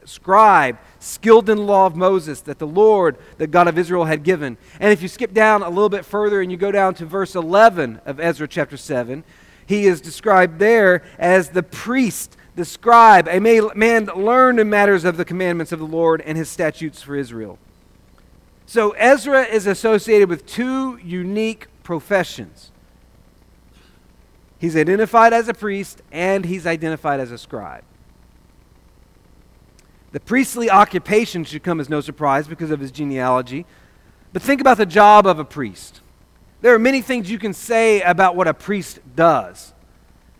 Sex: male